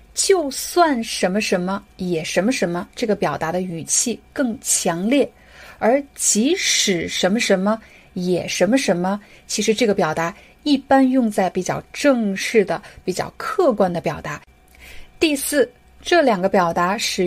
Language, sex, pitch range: Chinese, female, 190-245 Hz